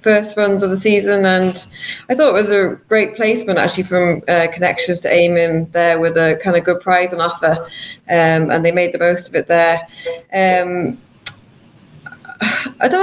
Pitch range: 170-200 Hz